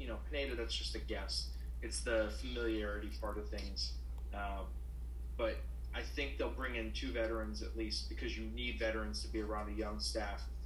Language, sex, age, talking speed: English, male, 20-39, 190 wpm